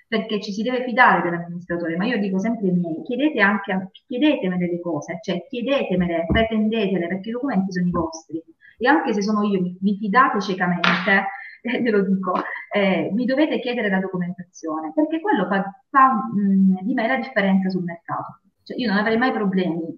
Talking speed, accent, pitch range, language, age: 175 wpm, native, 185-240 Hz, Italian, 30-49